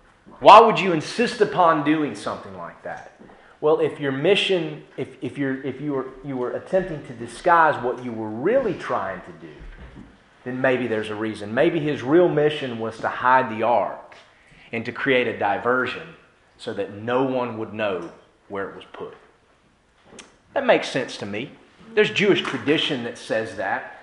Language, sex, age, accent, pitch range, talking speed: English, male, 30-49, American, 115-165 Hz, 175 wpm